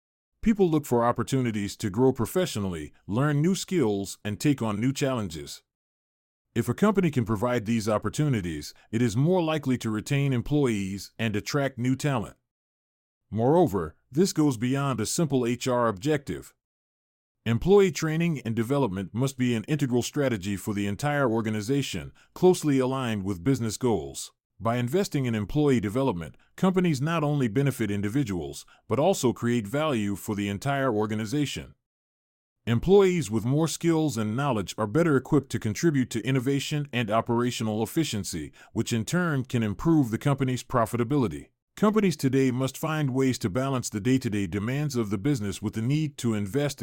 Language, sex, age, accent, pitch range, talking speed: English, male, 30-49, American, 110-145 Hz, 150 wpm